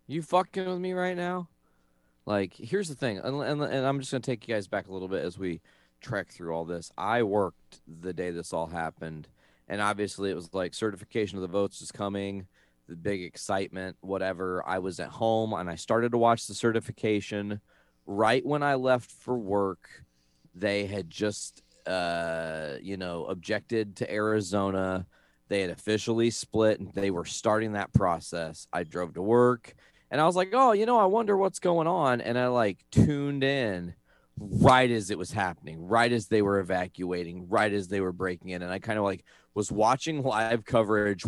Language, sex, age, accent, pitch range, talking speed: English, male, 30-49, American, 90-120 Hz, 195 wpm